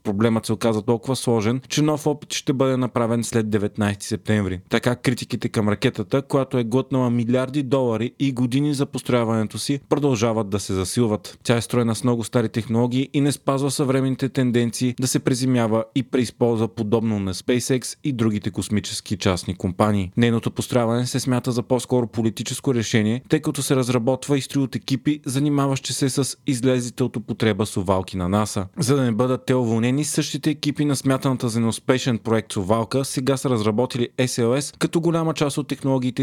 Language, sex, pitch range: Bulgarian, male, 110-130 Hz